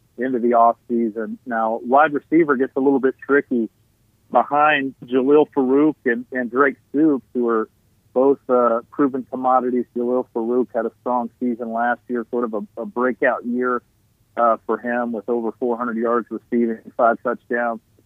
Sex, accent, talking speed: male, American, 165 wpm